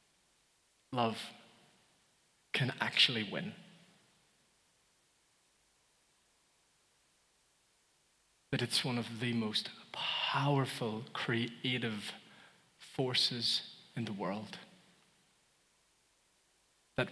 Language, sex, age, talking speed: English, male, 30-49, 60 wpm